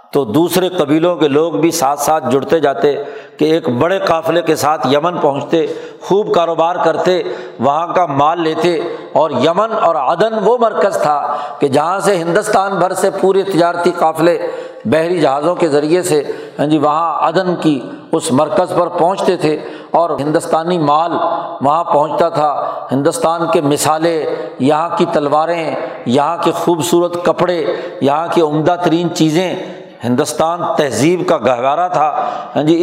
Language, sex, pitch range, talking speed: Urdu, male, 155-180 Hz, 150 wpm